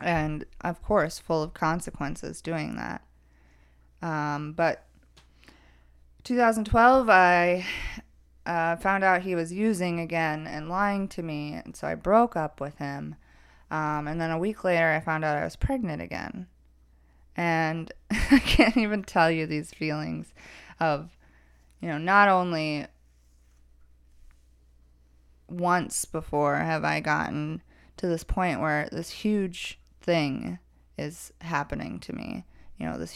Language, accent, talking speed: English, American, 135 wpm